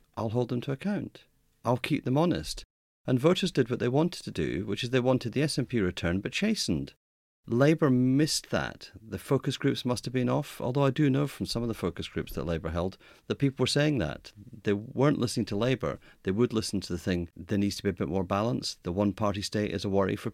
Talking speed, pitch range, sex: 235 wpm, 90-130 Hz, male